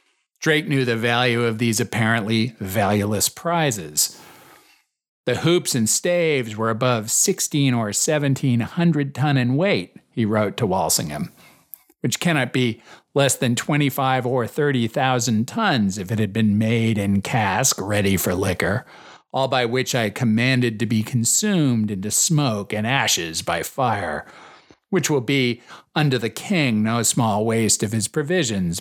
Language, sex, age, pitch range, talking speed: English, male, 40-59, 110-135 Hz, 150 wpm